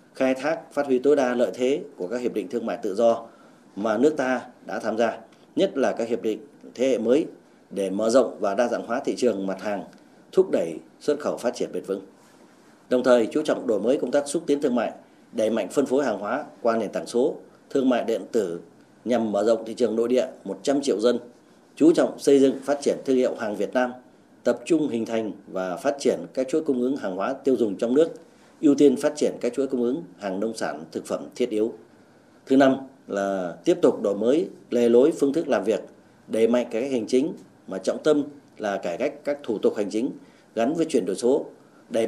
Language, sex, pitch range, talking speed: Vietnamese, male, 115-140 Hz, 235 wpm